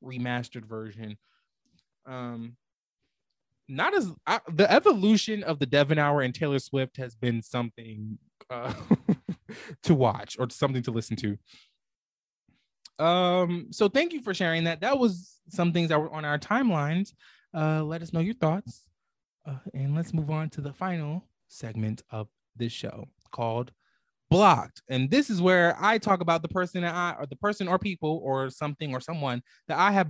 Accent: American